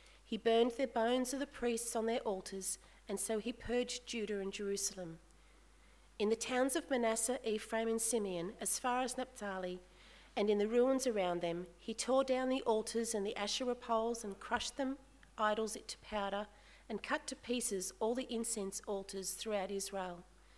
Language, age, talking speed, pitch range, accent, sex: English, 40-59, 180 wpm, 200-250 Hz, Australian, female